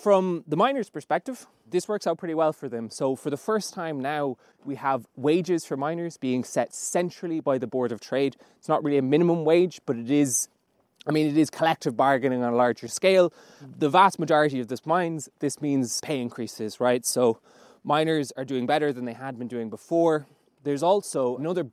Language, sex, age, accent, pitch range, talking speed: English, male, 20-39, Irish, 125-165 Hz, 205 wpm